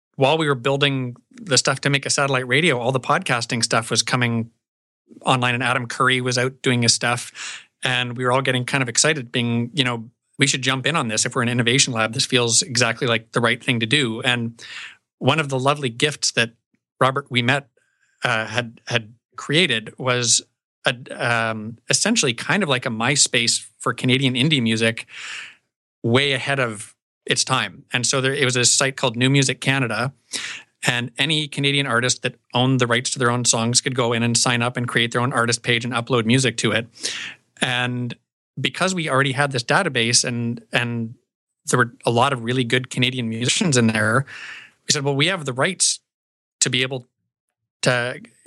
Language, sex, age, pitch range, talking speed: English, male, 30-49, 120-135 Hz, 195 wpm